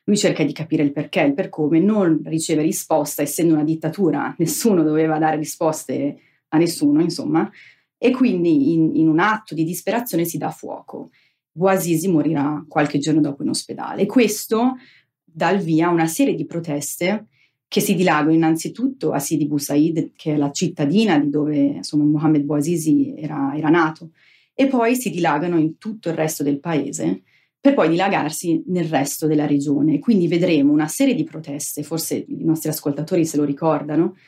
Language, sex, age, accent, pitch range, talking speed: Italian, female, 30-49, native, 150-185 Hz, 175 wpm